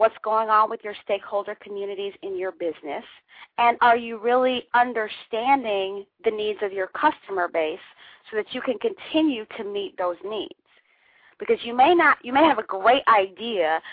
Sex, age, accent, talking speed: female, 40-59, American, 170 wpm